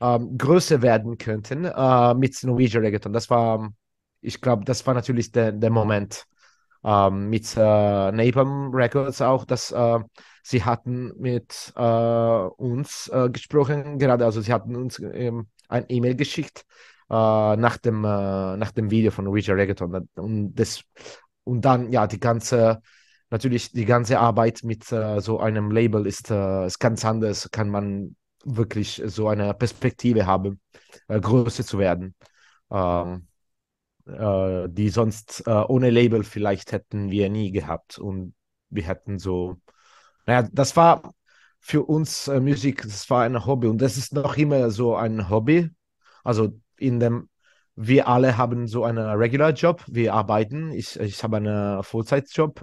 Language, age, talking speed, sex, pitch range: English, 30-49, 155 wpm, male, 105-125 Hz